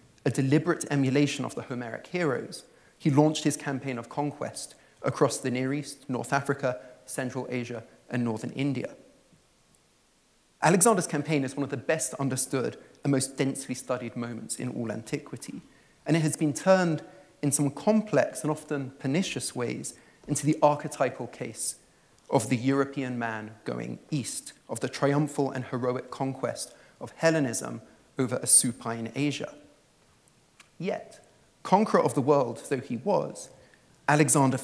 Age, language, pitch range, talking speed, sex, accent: 30-49, English, 125-150 Hz, 145 wpm, male, British